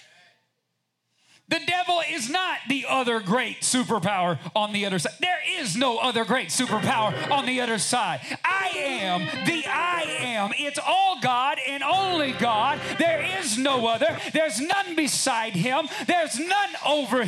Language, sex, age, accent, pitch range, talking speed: English, male, 40-59, American, 205-290 Hz, 155 wpm